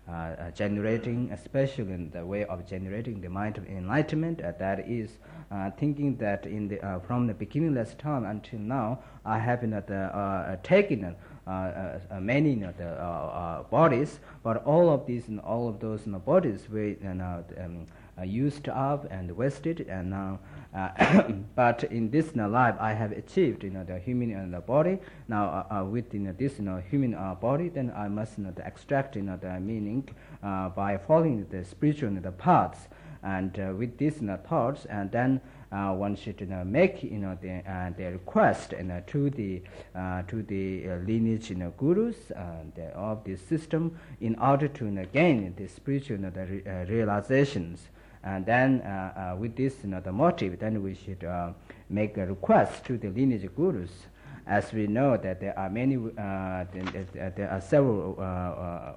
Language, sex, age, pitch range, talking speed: Italian, male, 50-69, 95-125 Hz, 165 wpm